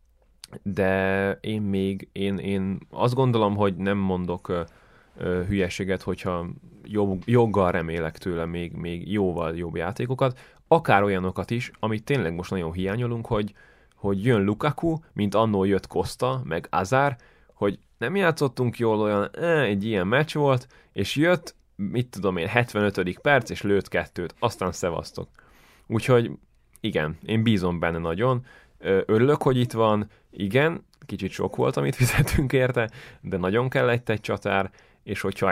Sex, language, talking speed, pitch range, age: male, Hungarian, 140 wpm, 90-115 Hz, 20-39